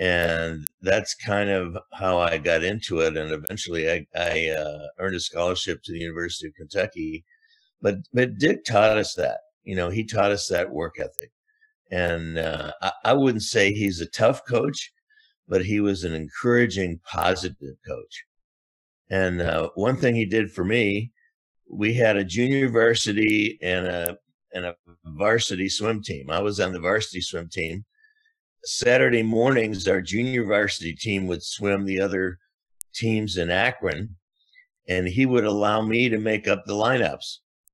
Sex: male